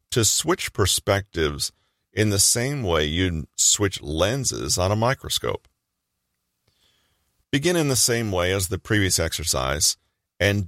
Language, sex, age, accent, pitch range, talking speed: English, male, 40-59, American, 80-110 Hz, 130 wpm